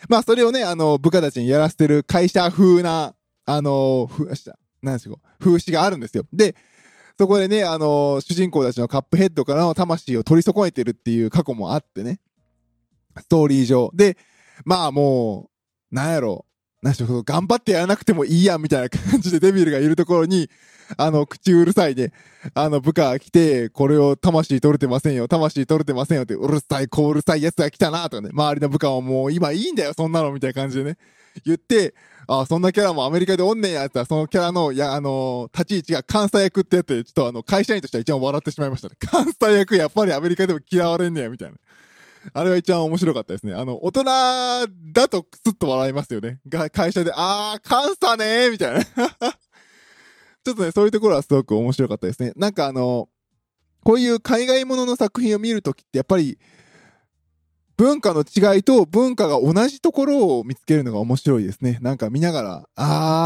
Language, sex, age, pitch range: Japanese, male, 20-39, 135-195 Hz